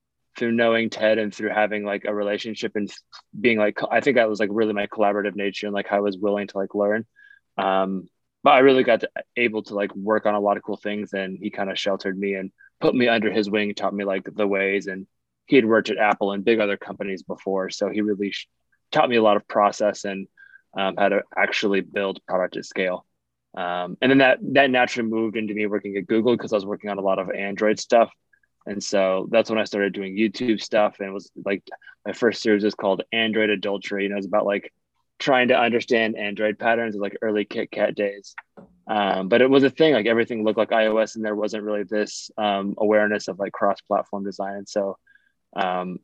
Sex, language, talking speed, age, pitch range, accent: male, English, 230 wpm, 20-39, 100-110 Hz, American